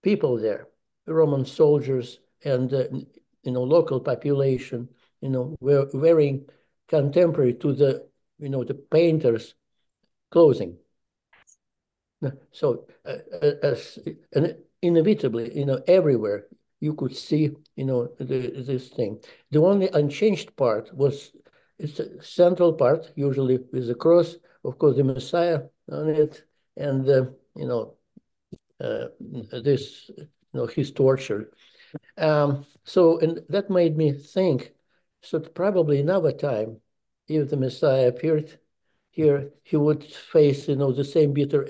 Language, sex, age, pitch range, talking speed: English, male, 60-79, 130-165 Hz, 135 wpm